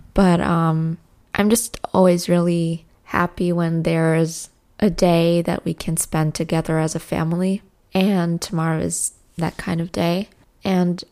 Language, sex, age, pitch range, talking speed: English, female, 20-39, 165-185 Hz, 145 wpm